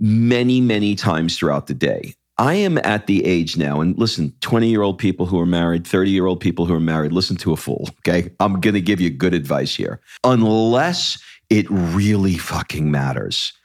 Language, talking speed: English, 180 wpm